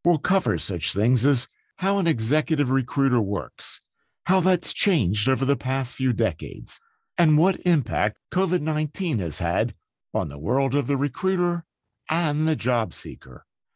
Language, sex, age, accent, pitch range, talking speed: English, male, 50-69, American, 120-165 Hz, 150 wpm